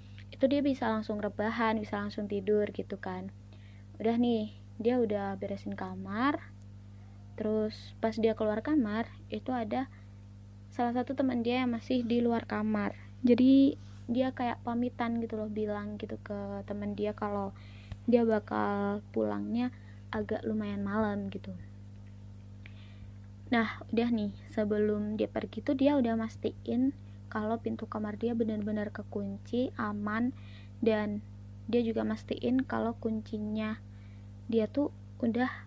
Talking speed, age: 130 wpm, 20-39